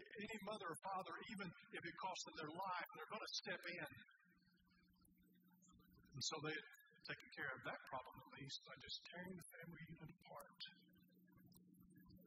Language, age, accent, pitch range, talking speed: English, 50-69, American, 135-180 Hz, 160 wpm